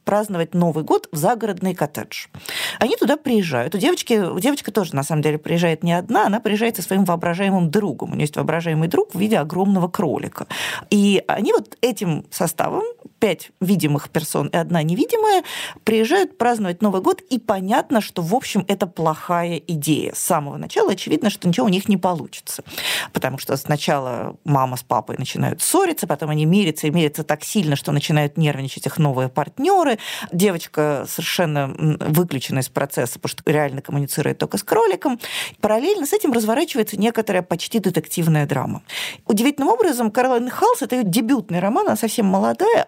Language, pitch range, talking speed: Russian, 160-225 Hz, 170 wpm